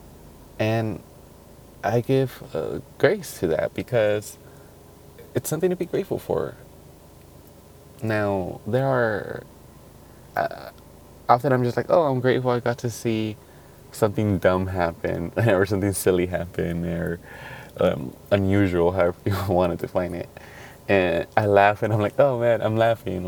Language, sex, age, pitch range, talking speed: English, male, 20-39, 85-115 Hz, 140 wpm